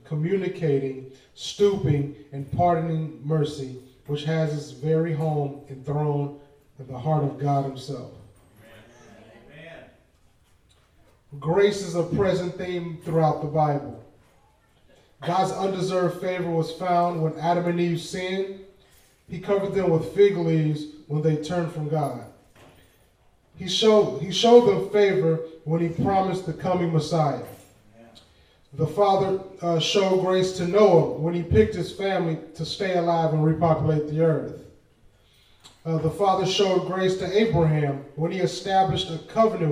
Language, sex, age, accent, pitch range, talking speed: English, male, 20-39, American, 145-185 Hz, 135 wpm